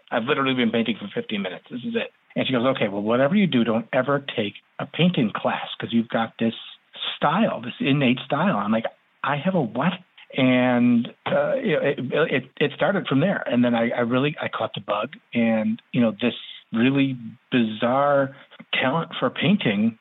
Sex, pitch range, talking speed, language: male, 110-150 Hz, 190 wpm, English